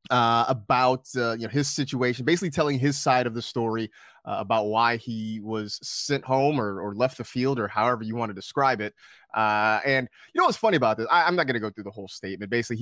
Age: 30-49